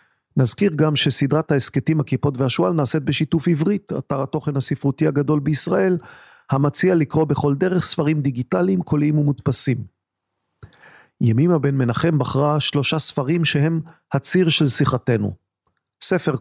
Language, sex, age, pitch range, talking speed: Hebrew, male, 40-59, 130-160 Hz, 120 wpm